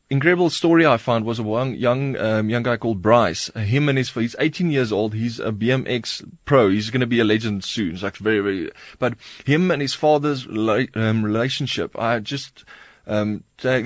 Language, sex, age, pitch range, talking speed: English, male, 20-39, 110-140 Hz, 195 wpm